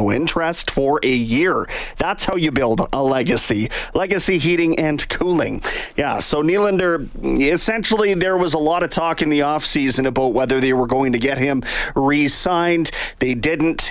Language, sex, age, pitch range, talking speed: English, male, 30-49, 120-170 Hz, 165 wpm